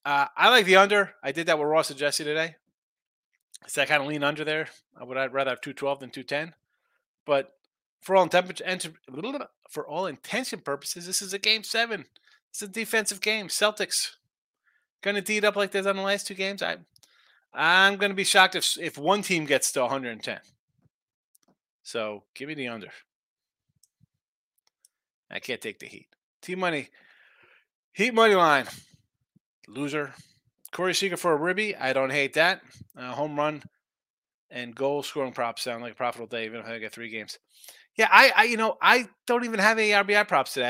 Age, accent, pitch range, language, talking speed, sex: 30-49, American, 140-200 Hz, English, 185 wpm, male